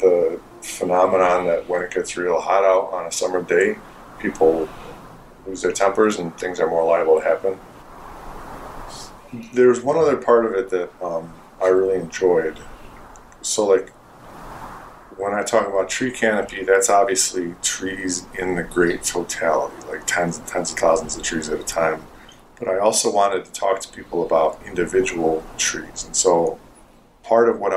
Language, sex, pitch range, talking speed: English, male, 90-115 Hz, 165 wpm